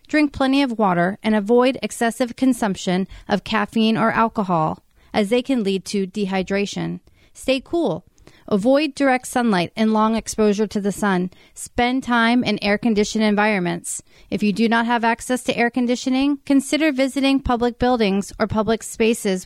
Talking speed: 155 wpm